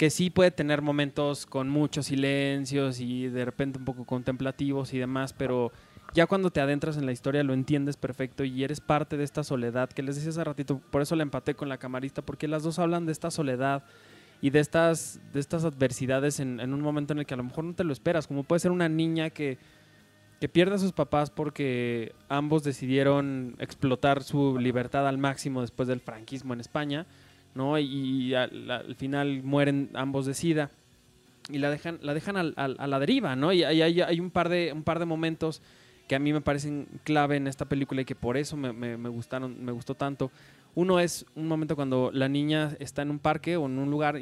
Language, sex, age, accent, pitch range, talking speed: Spanish, male, 20-39, Mexican, 130-155 Hz, 220 wpm